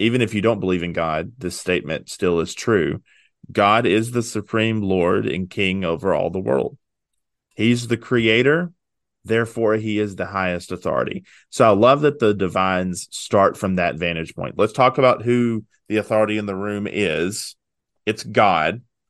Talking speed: 175 wpm